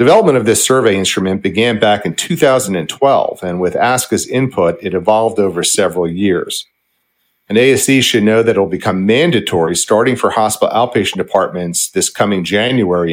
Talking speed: 155 wpm